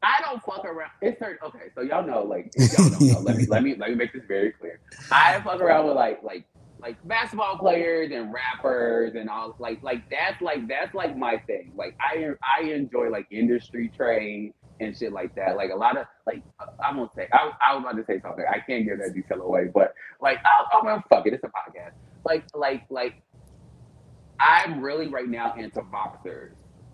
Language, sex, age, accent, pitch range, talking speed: English, male, 20-39, American, 115-155 Hz, 215 wpm